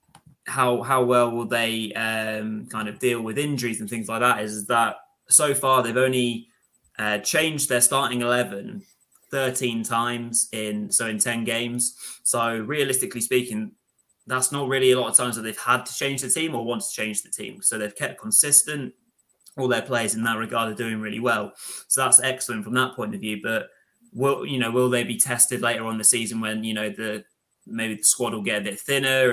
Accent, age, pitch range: British, 20-39, 110-130 Hz